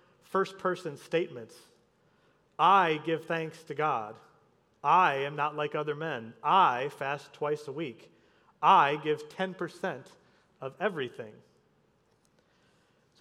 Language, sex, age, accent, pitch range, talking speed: English, male, 30-49, American, 145-190 Hz, 110 wpm